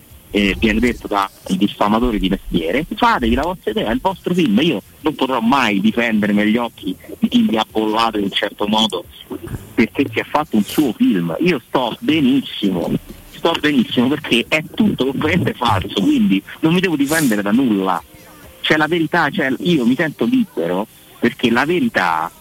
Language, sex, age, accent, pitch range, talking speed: Italian, male, 50-69, native, 105-170 Hz, 175 wpm